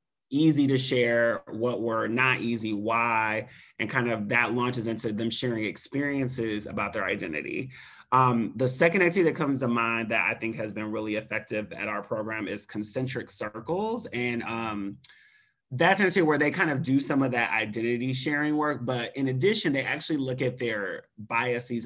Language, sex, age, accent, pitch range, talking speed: English, male, 30-49, American, 115-140 Hz, 180 wpm